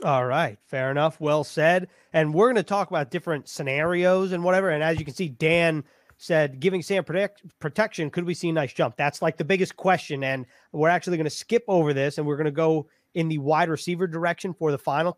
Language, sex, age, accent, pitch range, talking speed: English, male, 30-49, American, 145-180 Hz, 235 wpm